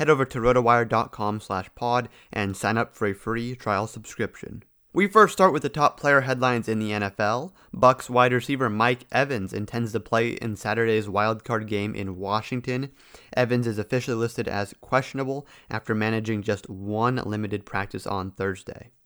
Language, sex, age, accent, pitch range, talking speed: English, male, 30-49, American, 105-130 Hz, 165 wpm